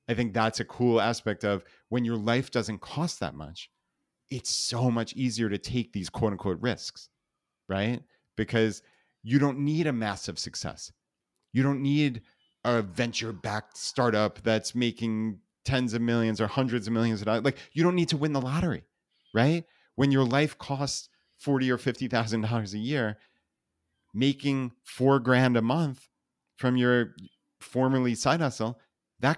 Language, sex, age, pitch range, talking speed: English, male, 30-49, 105-130 Hz, 160 wpm